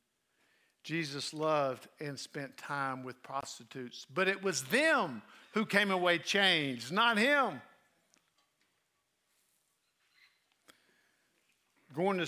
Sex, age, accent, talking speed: male, 50-69, American, 95 wpm